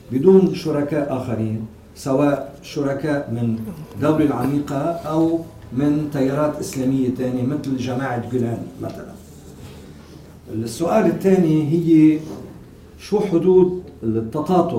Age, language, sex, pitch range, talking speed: 50-69, English, male, 115-160 Hz, 95 wpm